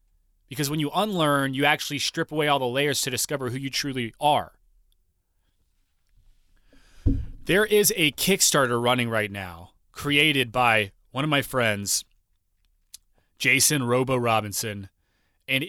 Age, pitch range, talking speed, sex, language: 30-49, 105-135 Hz, 130 wpm, male, English